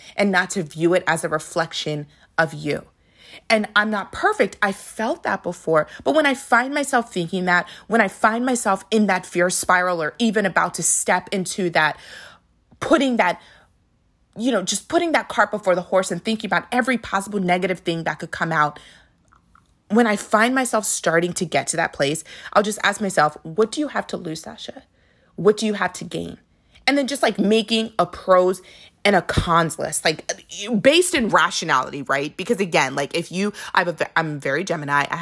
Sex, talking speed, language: female, 195 wpm, English